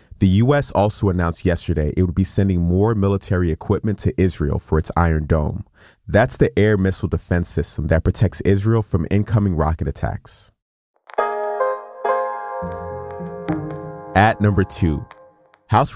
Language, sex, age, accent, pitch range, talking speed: English, male, 30-49, American, 85-105 Hz, 130 wpm